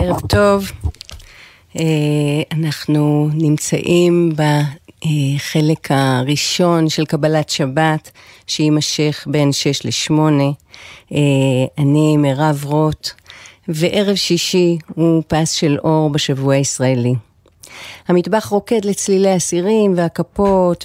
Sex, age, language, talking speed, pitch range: female, 40-59, Hebrew, 85 wpm, 140-165 Hz